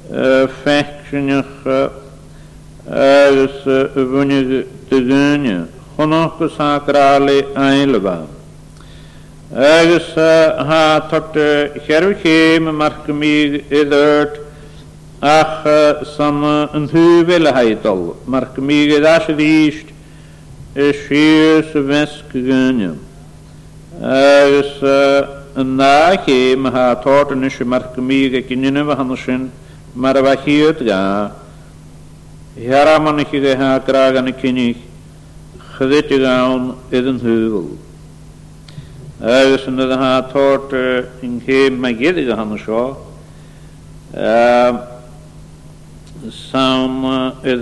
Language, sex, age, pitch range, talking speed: English, male, 60-79, 130-145 Hz, 60 wpm